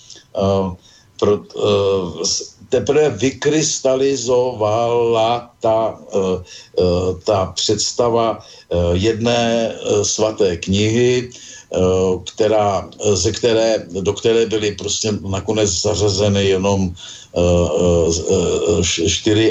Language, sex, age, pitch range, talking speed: Slovak, male, 50-69, 95-110 Hz, 60 wpm